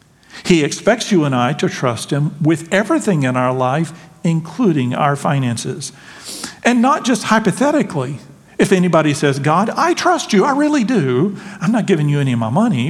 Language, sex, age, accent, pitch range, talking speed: English, male, 50-69, American, 135-195 Hz, 175 wpm